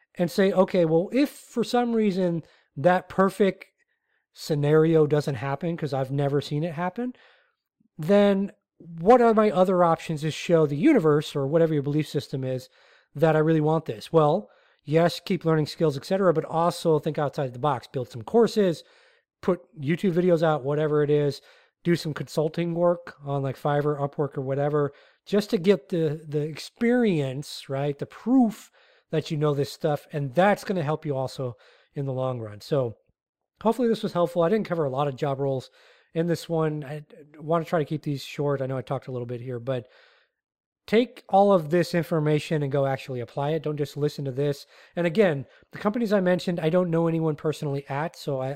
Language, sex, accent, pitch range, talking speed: English, male, American, 145-180 Hz, 200 wpm